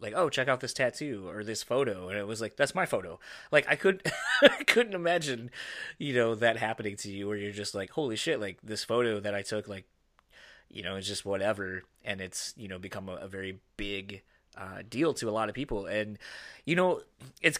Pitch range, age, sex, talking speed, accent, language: 100-125 Hz, 20-39, male, 220 wpm, American, English